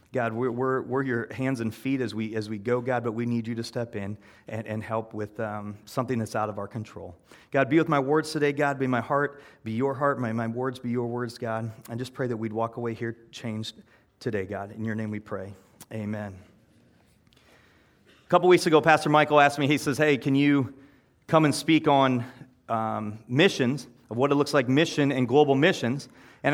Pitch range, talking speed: 115-150 Hz, 220 wpm